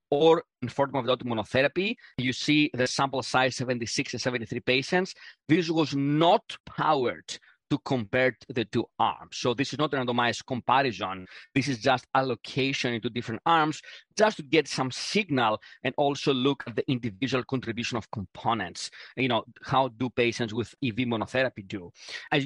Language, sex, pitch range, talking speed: English, male, 120-140 Hz, 165 wpm